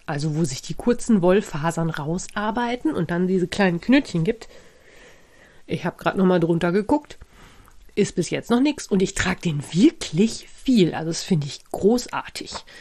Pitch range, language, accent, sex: 175-225 Hz, German, German, female